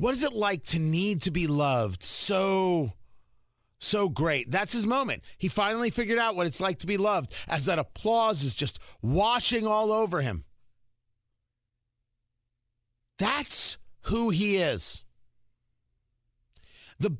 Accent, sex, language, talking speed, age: American, male, English, 135 wpm, 40-59